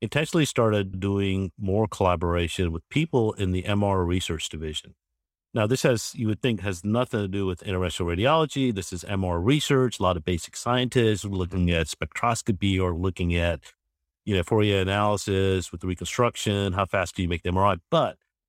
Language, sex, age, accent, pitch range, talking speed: English, male, 50-69, American, 85-110 Hz, 180 wpm